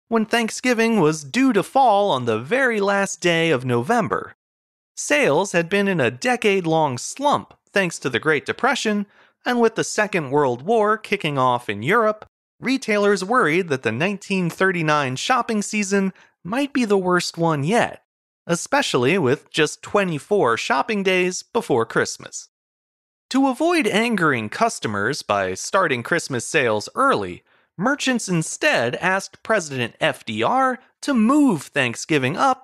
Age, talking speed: 30-49, 135 wpm